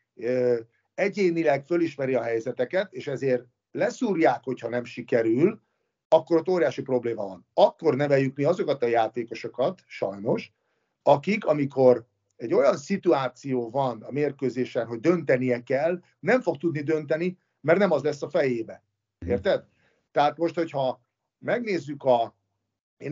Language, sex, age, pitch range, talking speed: Hungarian, male, 50-69, 125-160 Hz, 130 wpm